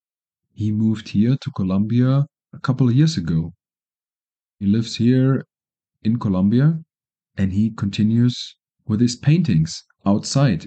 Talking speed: 125 wpm